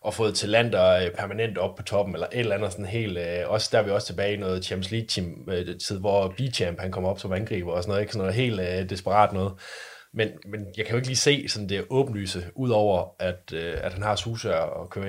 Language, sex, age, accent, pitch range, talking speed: Danish, male, 20-39, native, 95-110 Hz, 245 wpm